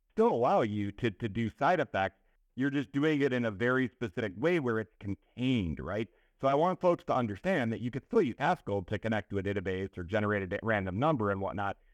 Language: English